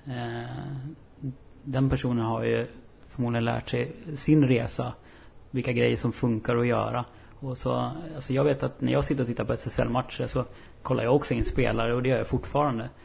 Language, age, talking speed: Swedish, 30-49, 180 wpm